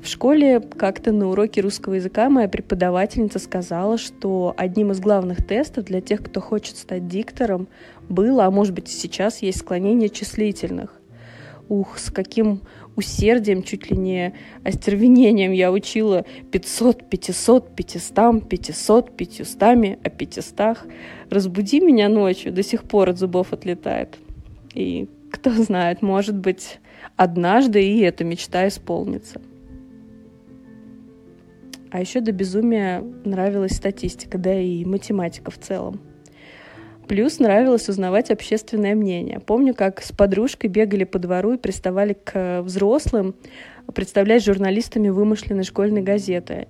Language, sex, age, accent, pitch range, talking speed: Russian, female, 20-39, native, 185-230 Hz, 125 wpm